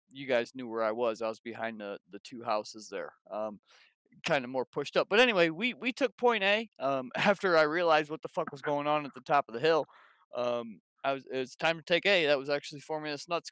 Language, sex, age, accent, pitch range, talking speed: English, male, 20-39, American, 125-160 Hz, 255 wpm